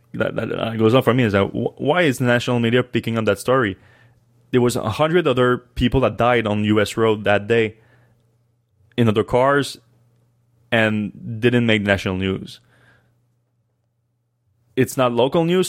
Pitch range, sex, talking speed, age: 105-120 Hz, male, 155 wpm, 20-39